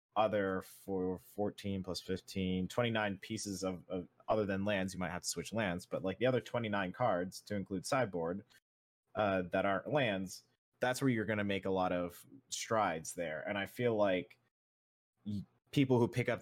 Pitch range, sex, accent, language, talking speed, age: 90-105 Hz, male, American, English, 185 wpm, 30-49